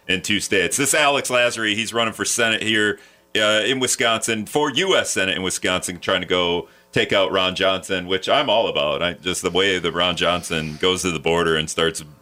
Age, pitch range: 40-59, 85-115 Hz